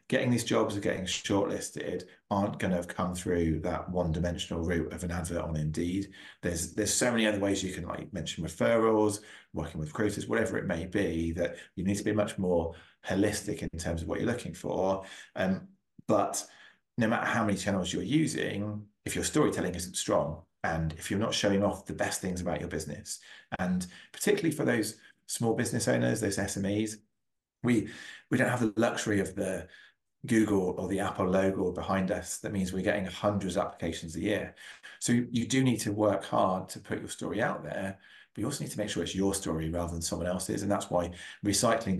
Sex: male